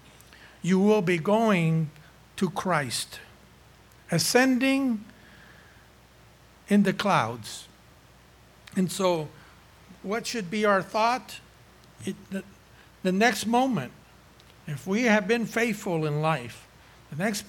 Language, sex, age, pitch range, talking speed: English, male, 60-79, 155-205 Hz, 105 wpm